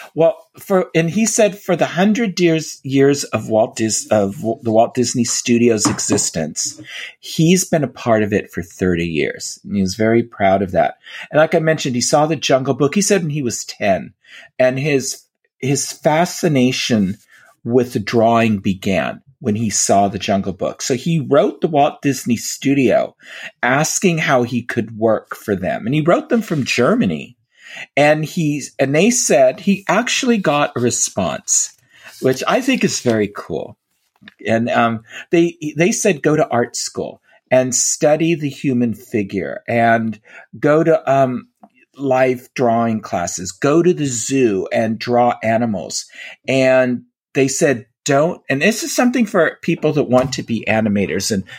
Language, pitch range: English, 115-160 Hz